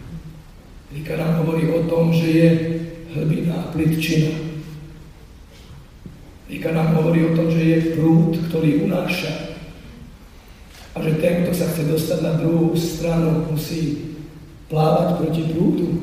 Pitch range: 160-170 Hz